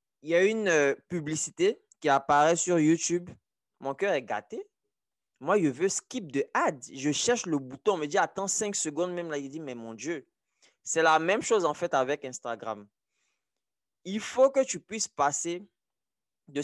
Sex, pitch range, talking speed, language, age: male, 140-180 Hz, 185 wpm, French, 20-39